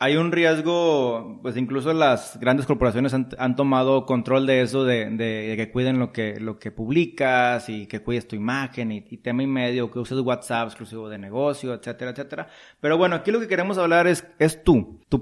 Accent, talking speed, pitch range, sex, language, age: Mexican, 210 wpm, 120-150 Hz, male, Spanish, 30-49